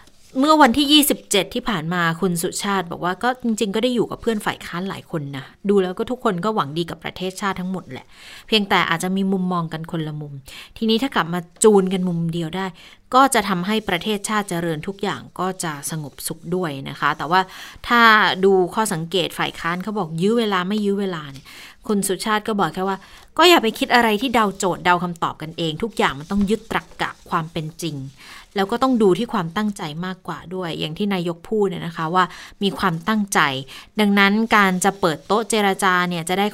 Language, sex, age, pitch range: Thai, female, 20-39, 170-215 Hz